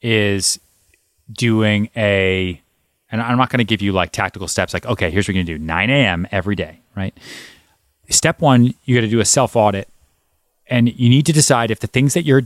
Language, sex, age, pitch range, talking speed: English, male, 30-49, 95-125 Hz, 200 wpm